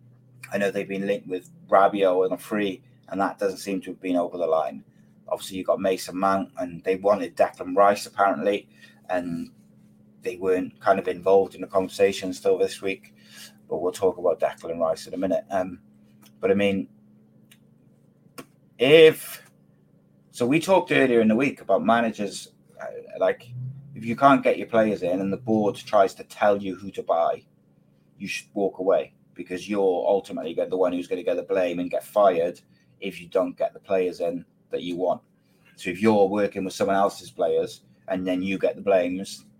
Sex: male